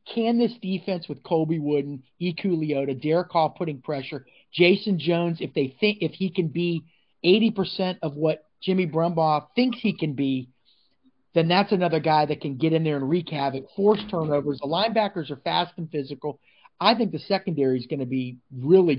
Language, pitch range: English, 140-180 Hz